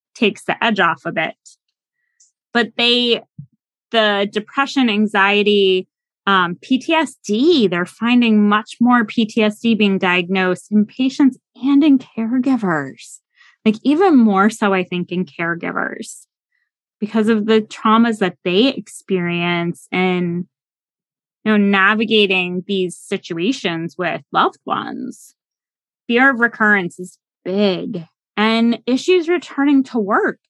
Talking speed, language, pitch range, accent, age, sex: 115 wpm, English, 190-245 Hz, American, 20-39, female